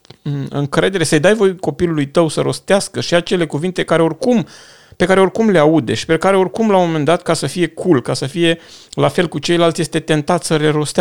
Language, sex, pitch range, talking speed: Romanian, male, 130-165 Hz, 225 wpm